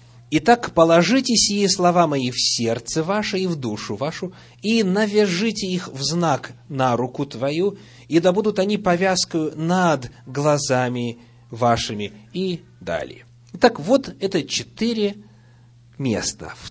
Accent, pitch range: native, 120-170 Hz